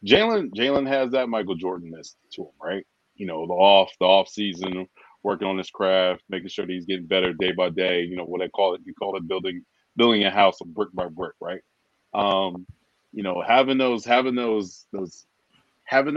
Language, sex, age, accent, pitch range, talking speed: English, male, 30-49, American, 95-120 Hz, 210 wpm